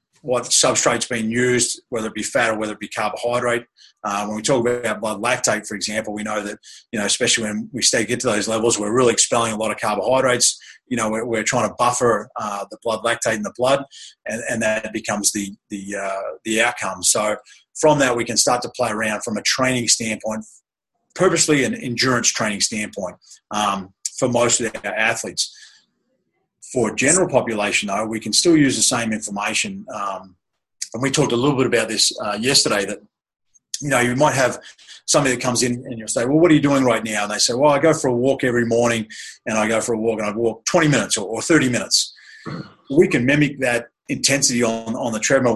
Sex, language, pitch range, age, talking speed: male, English, 110-130 Hz, 30-49, 215 wpm